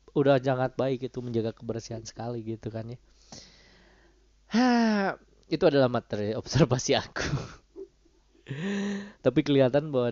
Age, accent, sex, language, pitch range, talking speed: 20-39, native, male, Indonesian, 110-150 Hz, 115 wpm